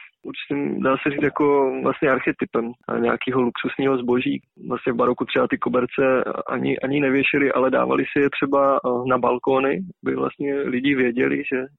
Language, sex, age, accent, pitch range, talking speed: Czech, male, 20-39, native, 120-135 Hz, 155 wpm